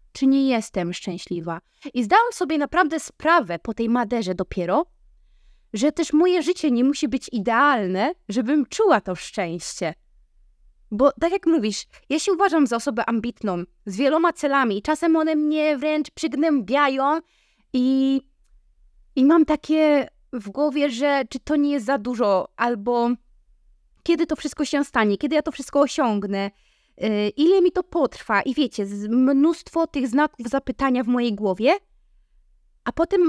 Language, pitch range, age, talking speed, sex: Polish, 235-315 Hz, 20-39, 150 wpm, female